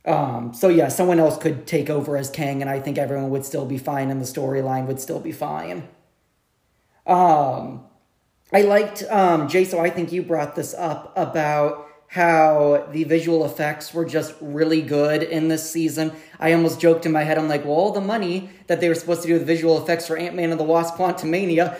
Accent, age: American, 30-49